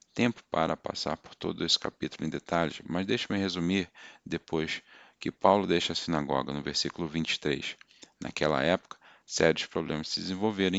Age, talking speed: 40-59, 150 wpm